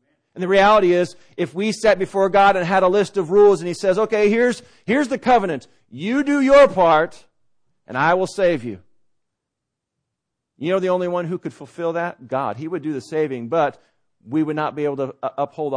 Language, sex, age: English, male, 40-59